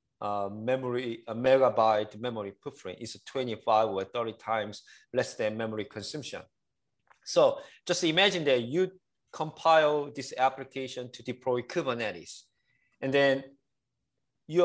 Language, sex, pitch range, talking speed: English, male, 110-145 Hz, 120 wpm